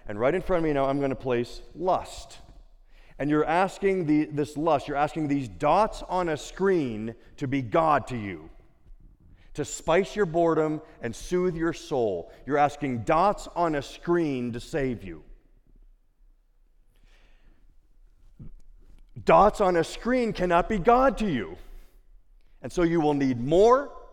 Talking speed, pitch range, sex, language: 150 wpm, 115-180 Hz, male, English